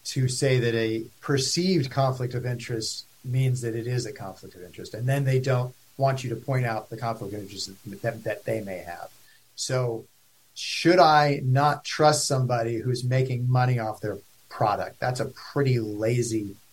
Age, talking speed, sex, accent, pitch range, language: 50-69, 185 wpm, male, American, 110-135 Hz, English